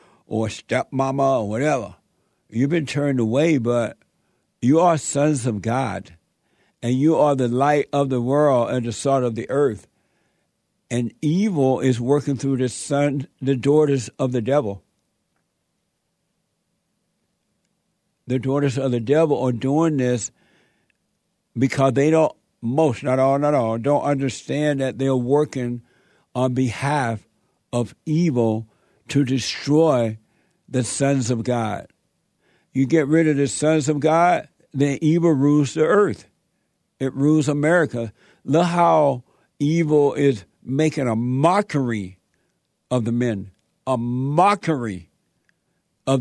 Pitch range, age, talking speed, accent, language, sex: 125-150 Hz, 60-79, 130 wpm, American, English, male